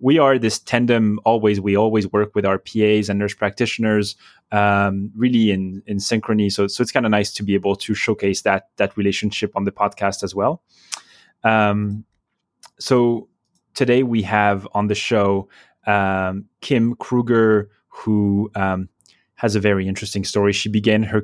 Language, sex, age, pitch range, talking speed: English, male, 20-39, 95-110 Hz, 165 wpm